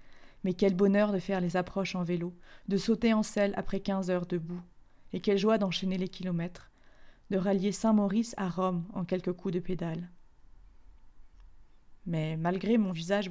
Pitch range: 175-205 Hz